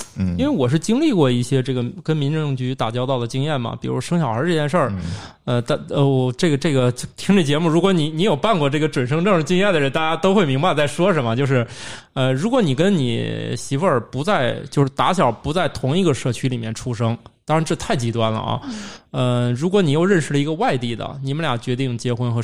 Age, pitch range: 20-39, 120-160 Hz